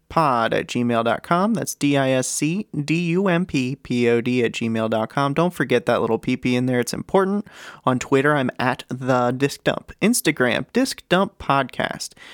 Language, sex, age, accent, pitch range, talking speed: English, male, 30-49, American, 125-160 Hz, 130 wpm